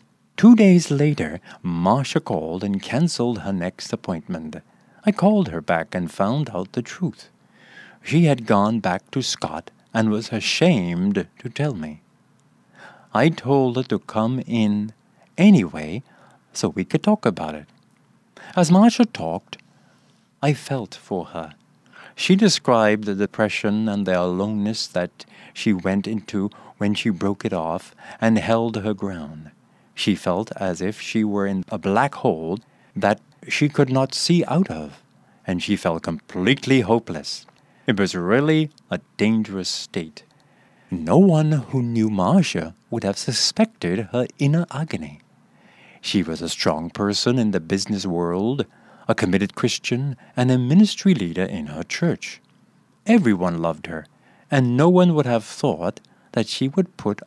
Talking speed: 150 wpm